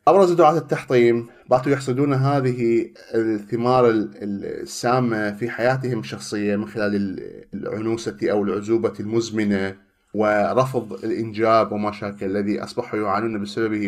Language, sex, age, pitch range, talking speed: Arabic, male, 30-49, 105-135 Hz, 105 wpm